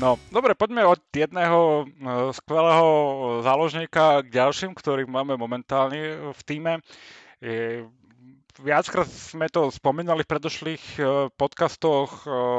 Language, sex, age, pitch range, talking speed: Slovak, male, 30-49, 120-145 Hz, 100 wpm